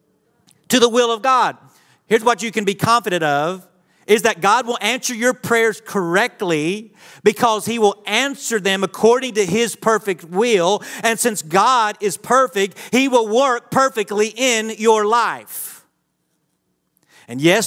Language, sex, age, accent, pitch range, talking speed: English, male, 40-59, American, 185-225 Hz, 150 wpm